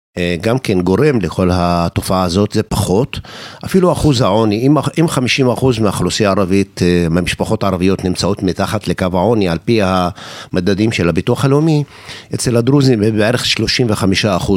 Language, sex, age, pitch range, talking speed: Hebrew, male, 50-69, 95-125 Hz, 130 wpm